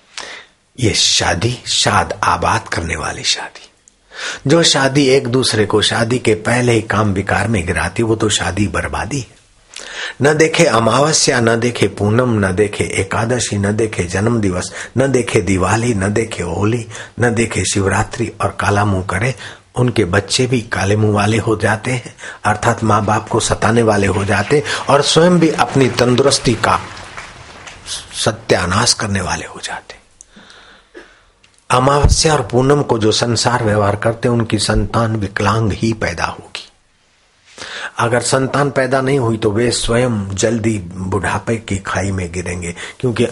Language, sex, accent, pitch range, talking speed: Hindi, male, native, 100-125 Hz, 145 wpm